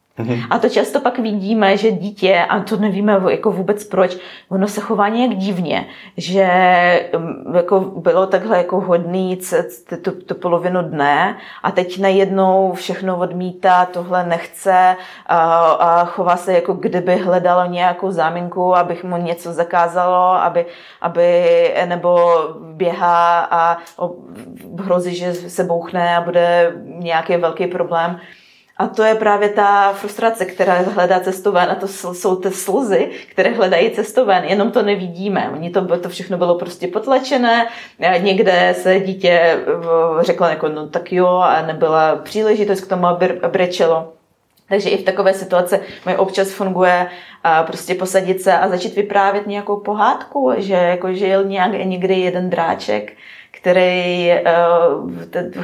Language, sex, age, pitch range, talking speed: Czech, female, 20-39, 175-195 Hz, 135 wpm